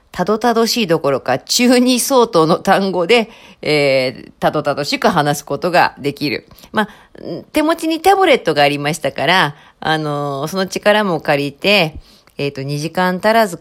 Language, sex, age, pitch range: Japanese, female, 40-59, 145-205 Hz